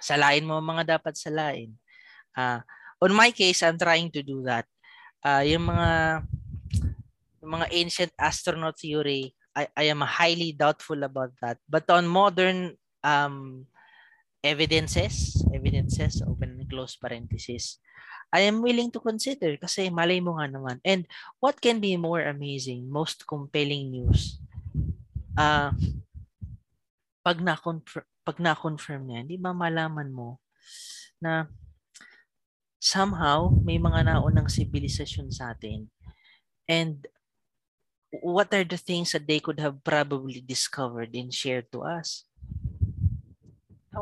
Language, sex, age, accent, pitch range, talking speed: Filipino, female, 20-39, native, 125-170 Hz, 125 wpm